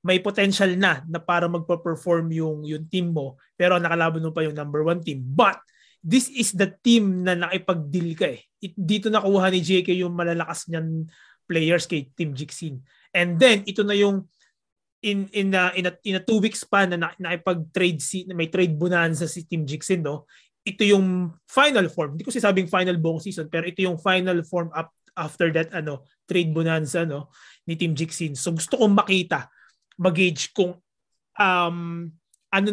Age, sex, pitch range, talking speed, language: 20-39, male, 160-190 Hz, 180 wpm, English